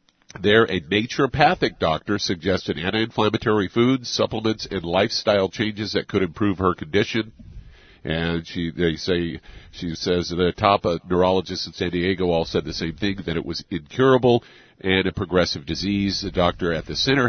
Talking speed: 160 wpm